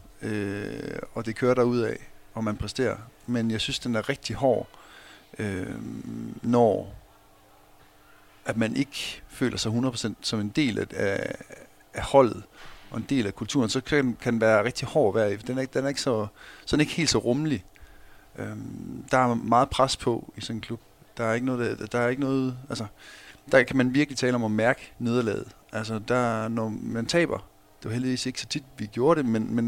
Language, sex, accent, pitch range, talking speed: Danish, male, native, 110-130 Hz, 200 wpm